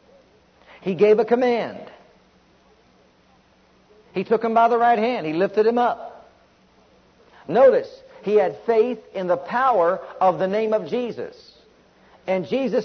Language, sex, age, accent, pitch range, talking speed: English, male, 50-69, American, 195-245 Hz, 135 wpm